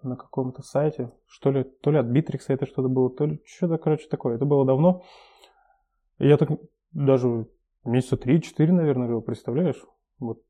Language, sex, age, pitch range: Russian, male, 20-39, 125-145 Hz